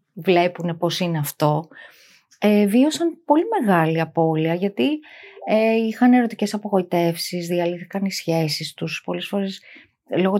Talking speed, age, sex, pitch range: 120 wpm, 20-39, female, 165-220 Hz